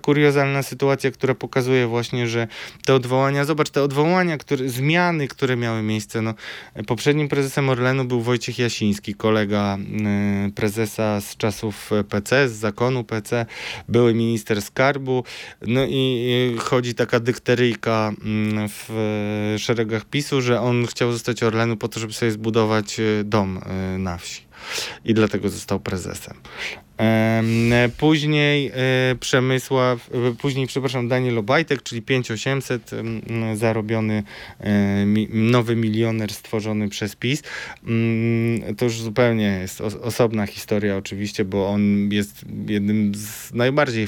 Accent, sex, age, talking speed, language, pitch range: native, male, 20-39, 125 wpm, Polish, 105-125 Hz